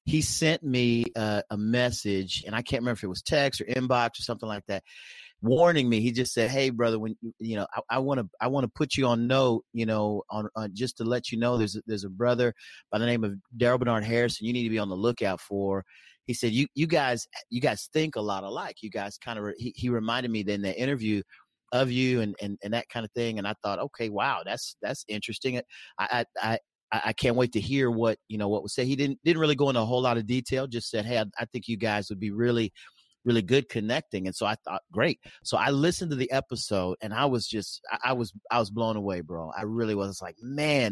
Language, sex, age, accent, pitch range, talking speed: English, male, 30-49, American, 105-130 Hz, 260 wpm